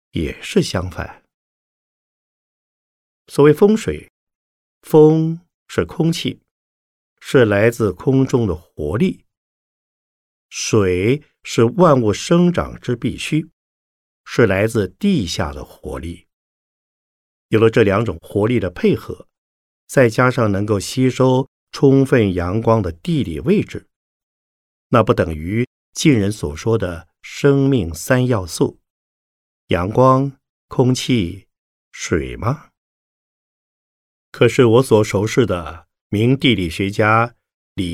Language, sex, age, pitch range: Chinese, male, 50-69, 90-135 Hz